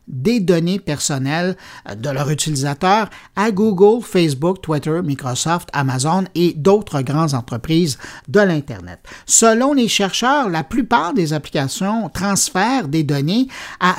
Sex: male